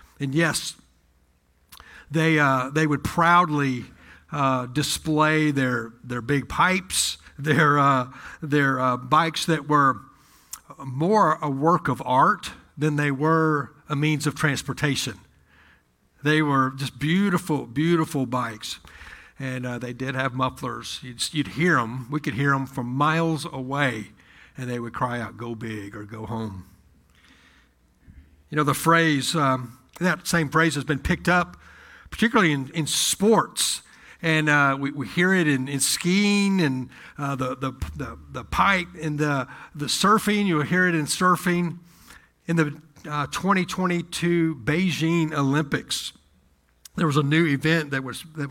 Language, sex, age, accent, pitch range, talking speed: English, male, 60-79, American, 125-165 Hz, 150 wpm